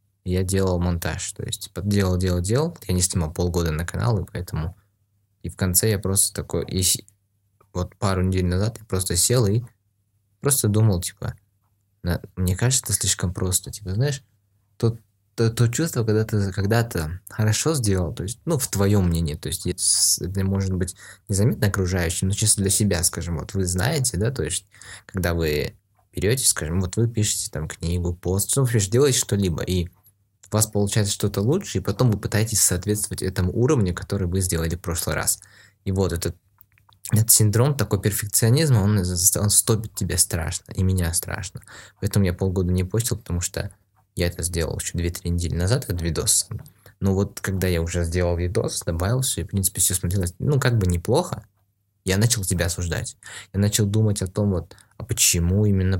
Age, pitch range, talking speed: 20-39, 90-110 Hz, 185 wpm